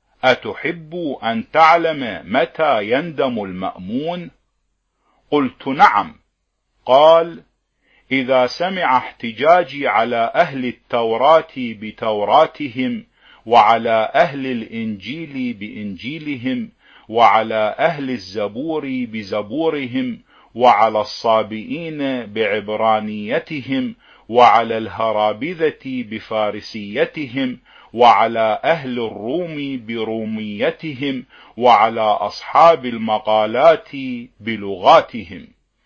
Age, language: 50-69, Arabic